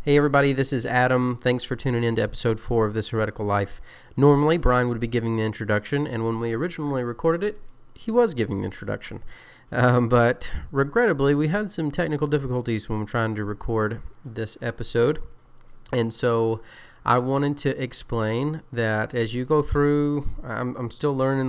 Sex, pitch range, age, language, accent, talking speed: male, 110-130 Hz, 30-49, English, American, 180 wpm